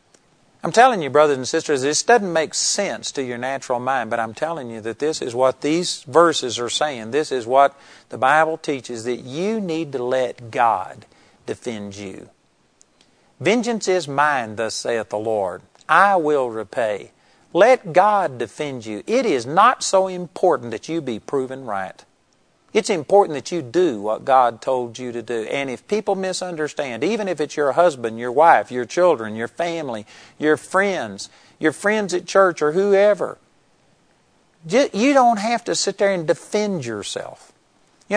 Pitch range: 125-185 Hz